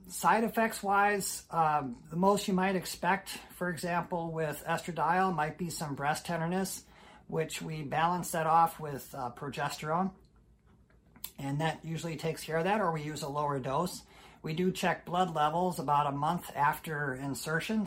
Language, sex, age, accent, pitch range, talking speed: English, male, 50-69, American, 140-170 Hz, 165 wpm